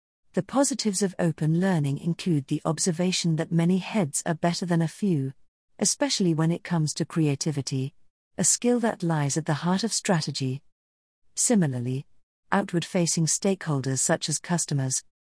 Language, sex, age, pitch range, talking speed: English, female, 50-69, 150-195 Hz, 145 wpm